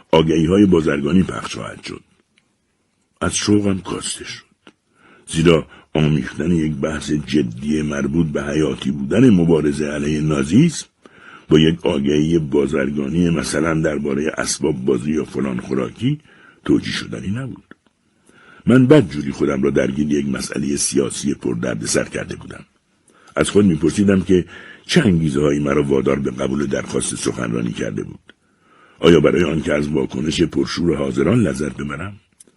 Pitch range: 75-100 Hz